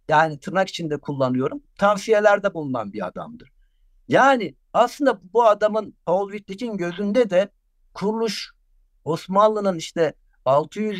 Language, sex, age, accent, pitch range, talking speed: Turkish, male, 60-79, native, 155-220 Hz, 110 wpm